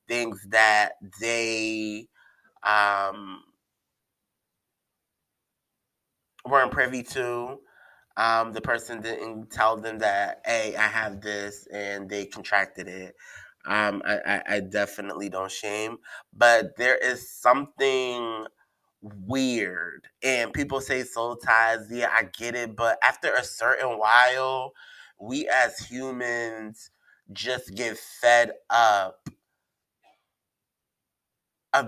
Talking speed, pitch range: 105 wpm, 105-125 Hz